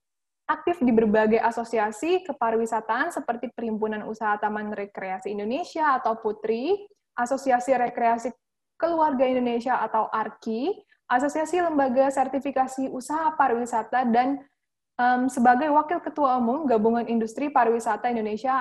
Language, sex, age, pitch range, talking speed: Indonesian, female, 10-29, 220-275 Hz, 110 wpm